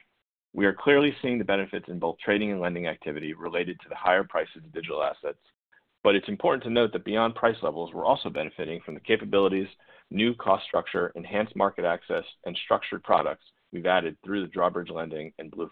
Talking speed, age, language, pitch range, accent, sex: 200 wpm, 40-59, English, 85-105 Hz, American, male